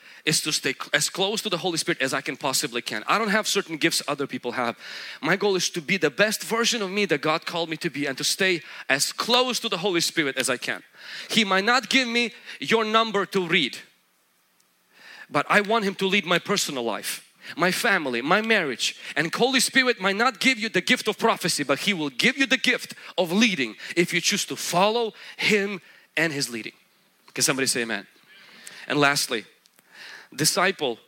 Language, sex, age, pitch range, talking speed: English, male, 30-49, 150-210 Hz, 210 wpm